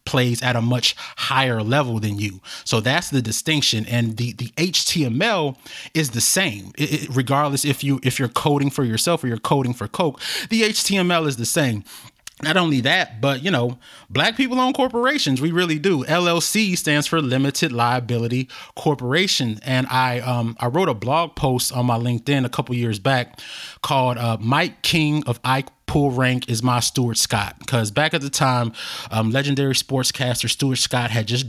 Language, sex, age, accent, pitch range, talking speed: English, male, 30-49, American, 120-145 Hz, 185 wpm